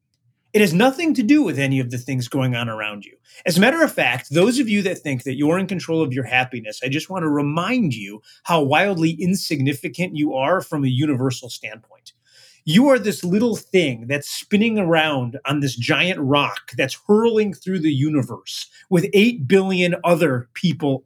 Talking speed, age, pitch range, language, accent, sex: 195 wpm, 30-49, 135-195 Hz, English, American, male